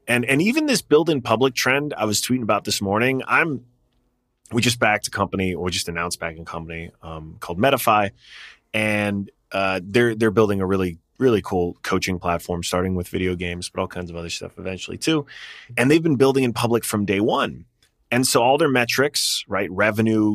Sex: male